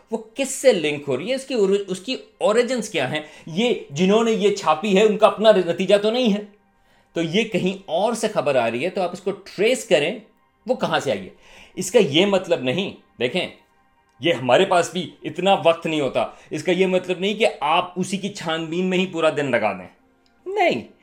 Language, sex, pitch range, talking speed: Urdu, male, 155-205 Hz, 220 wpm